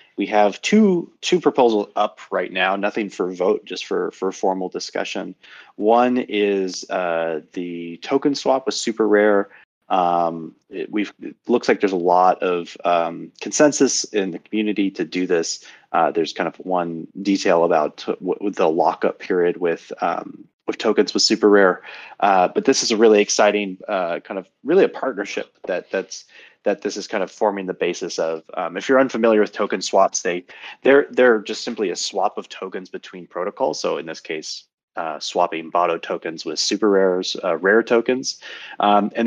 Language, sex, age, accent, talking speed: English, male, 30-49, American, 185 wpm